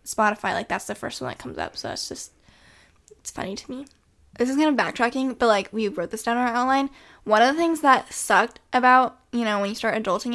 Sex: female